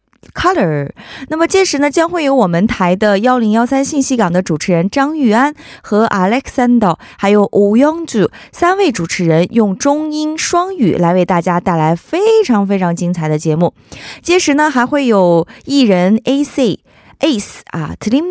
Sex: female